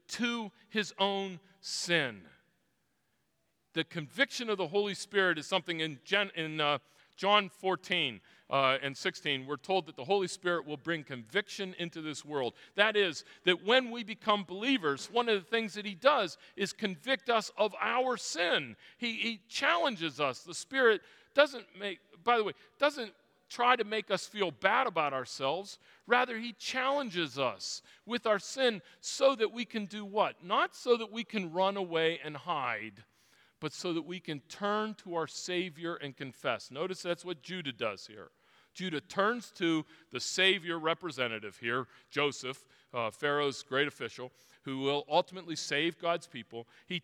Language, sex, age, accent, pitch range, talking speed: English, male, 40-59, American, 155-215 Hz, 165 wpm